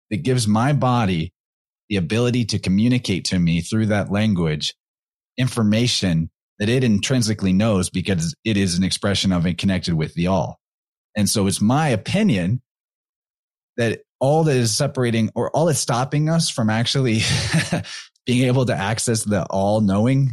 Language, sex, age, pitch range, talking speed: English, male, 30-49, 95-115 Hz, 155 wpm